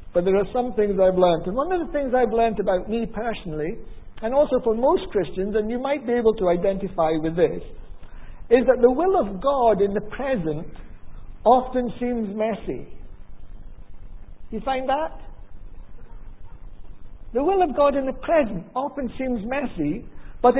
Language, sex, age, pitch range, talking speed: English, male, 60-79, 210-315 Hz, 165 wpm